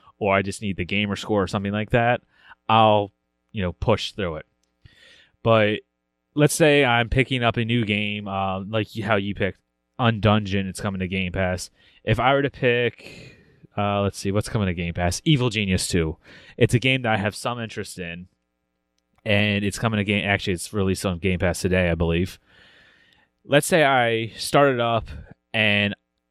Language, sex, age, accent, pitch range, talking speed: English, male, 20-39, American, 90-110 Hz, 185 wpm